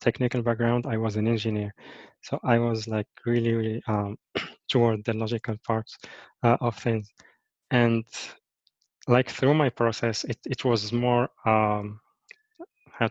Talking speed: 140 wpm